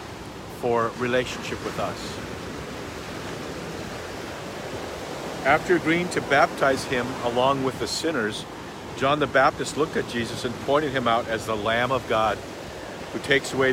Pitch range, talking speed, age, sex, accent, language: 110-130 Hz, 135 wpm, 50-69, male, American, English